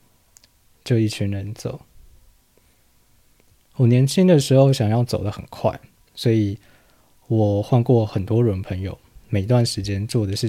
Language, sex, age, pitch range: Chinese, male, 20-39, 100-120 Hz